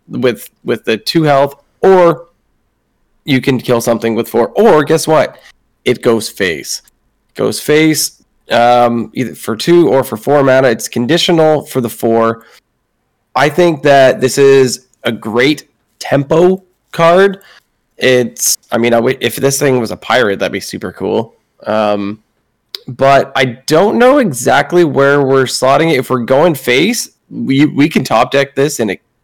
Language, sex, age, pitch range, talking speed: English, male, 20-39, 115-150 Hz, 160 wpm